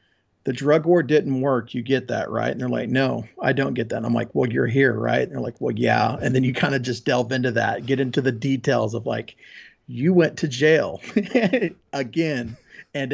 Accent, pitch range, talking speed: American, 125-145 Hz, 225 wpm